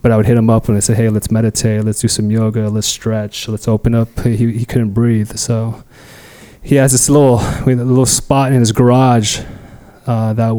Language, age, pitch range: English, 20-39, 110-115 Hz